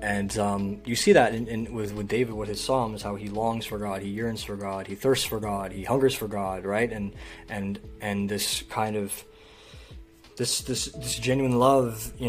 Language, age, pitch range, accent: English, 20-39, 105-120 Hz, American